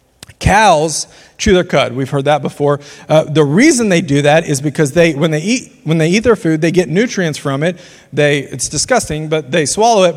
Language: English